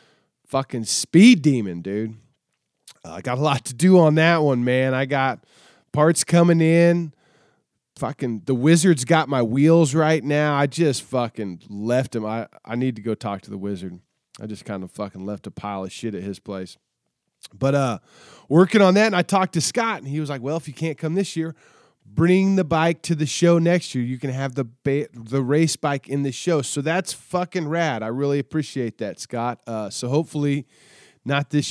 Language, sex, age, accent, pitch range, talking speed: English, male, 20-39, American, 110-160 Hz, 205 wpm